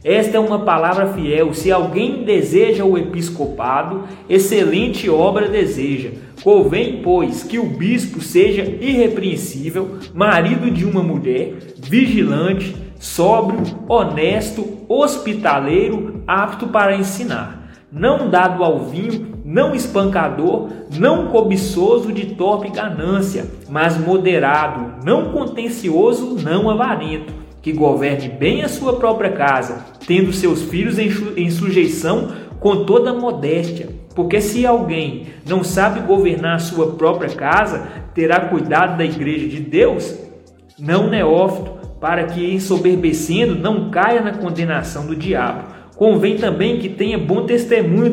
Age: 20-39